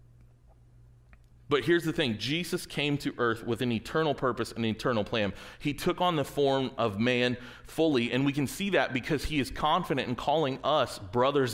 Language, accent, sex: English, American, male